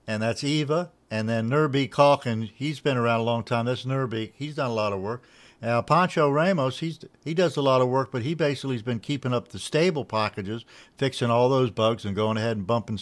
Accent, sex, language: American, male, English